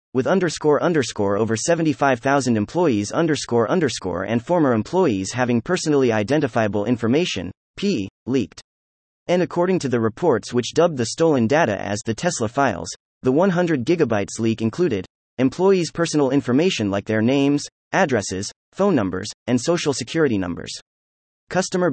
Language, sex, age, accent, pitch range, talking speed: English, male, 30-49, American, 110-165 Hz, 135 wpm